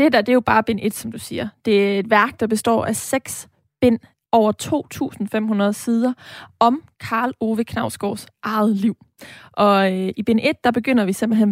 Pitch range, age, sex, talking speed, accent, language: 205-230 Hz, 20-39, female, 200 wpm, native, Danish